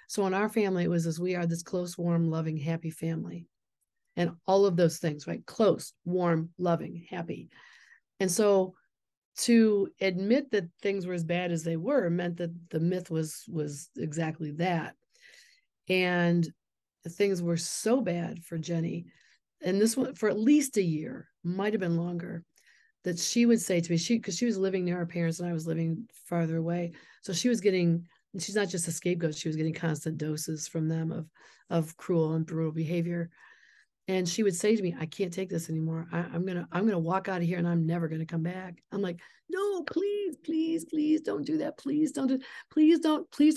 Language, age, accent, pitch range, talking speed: English, 40-59, American, 170-220 Hz, 205 wpm